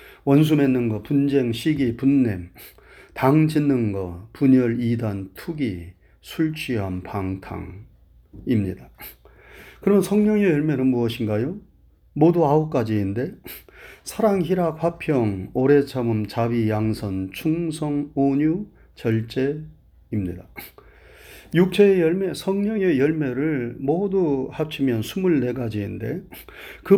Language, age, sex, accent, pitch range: Korean, 30-49, male, native, 115-160 Hz